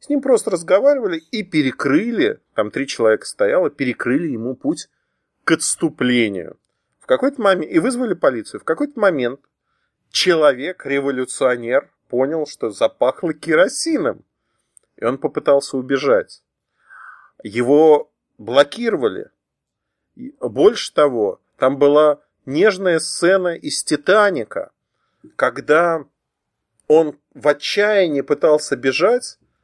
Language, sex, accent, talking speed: Russian, male, native, 95 wpm